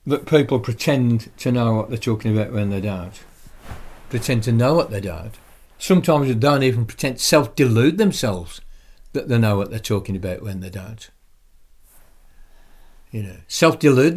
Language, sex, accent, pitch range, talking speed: English, male, British, 100-125 Hz, 155 wpm